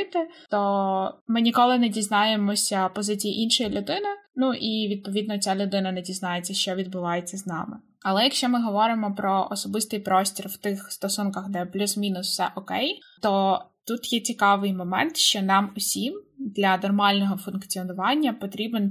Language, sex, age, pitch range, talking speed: Ukrainian, female, 20-39, 185-220 Hz, 145 wpm